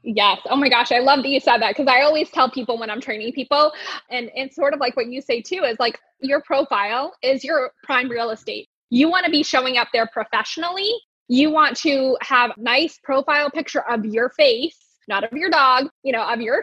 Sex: female